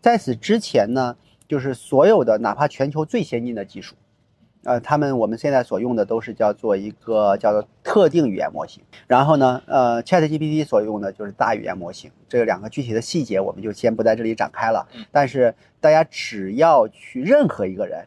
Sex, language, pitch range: male, Chinese, 105-145 Hz